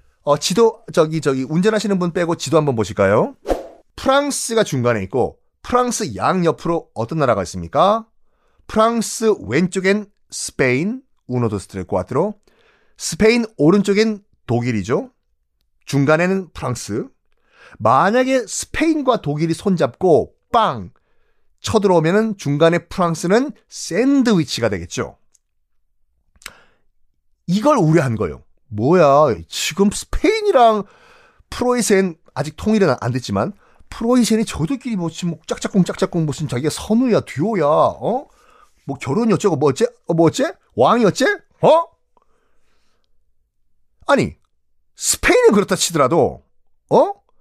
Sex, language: male, Korean